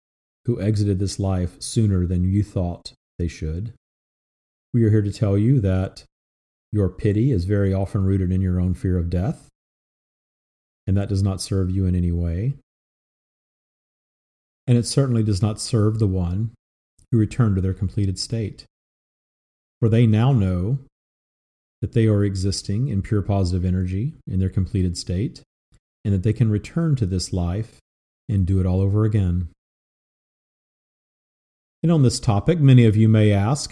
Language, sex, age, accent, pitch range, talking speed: English, male, 40-59, American, 90-115 Hz, 160 wpm